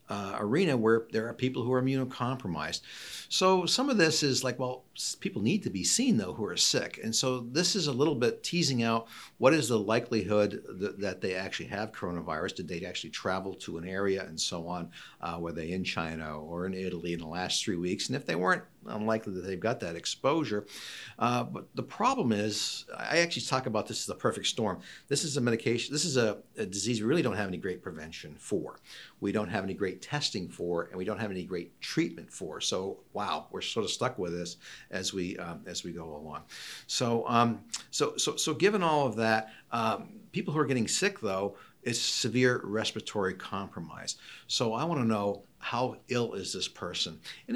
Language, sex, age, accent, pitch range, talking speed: English, male, 50-69, American, 100-140 Hz, 210 wpm